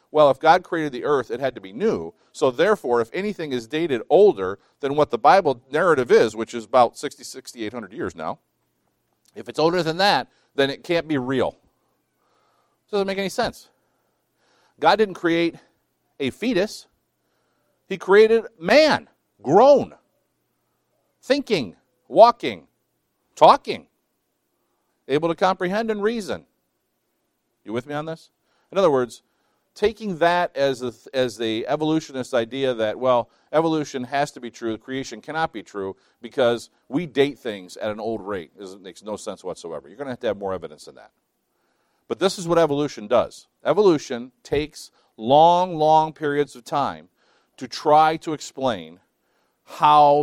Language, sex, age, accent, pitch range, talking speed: English, male, 50-69, American, 125-170 Hz, 155 wpm